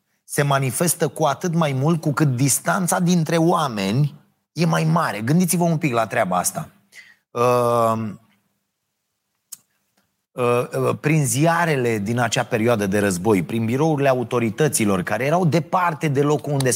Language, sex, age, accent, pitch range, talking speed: Romanian, male, 30-49, native, 120-170 Hz, 130 wpm